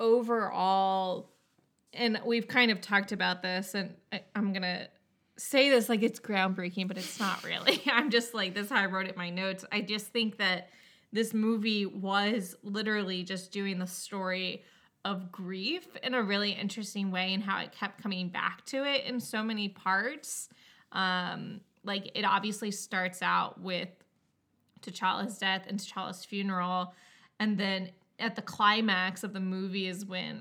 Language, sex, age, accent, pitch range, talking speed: English, female, 20-39, American, 185-215 Hz, 170 wpm